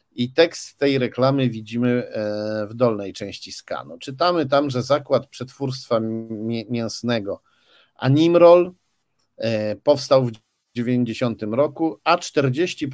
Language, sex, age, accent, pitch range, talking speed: Polish, male, 50-69, native, 105-135 Hz, 90 wpm